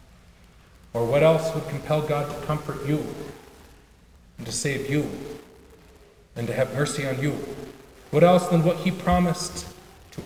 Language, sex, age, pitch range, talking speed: English, male, 40-59, 165-225 Hz, 150 wpm